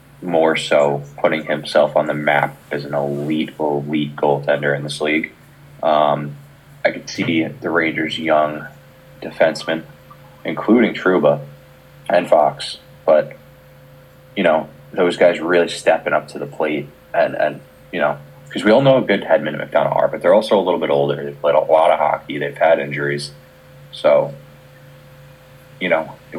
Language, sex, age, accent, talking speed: English, male, 20-39, American, 165 wpm